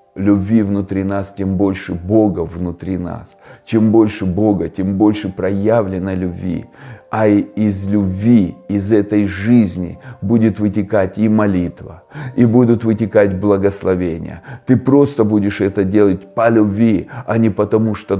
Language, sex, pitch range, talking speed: Russian, male, 95-115 Hz, 130 wpm